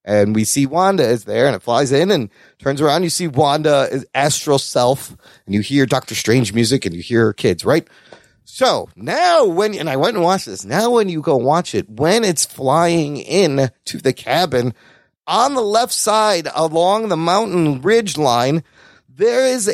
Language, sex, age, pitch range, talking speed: English, male, 30-49, 130-205 Hz, 190 wpm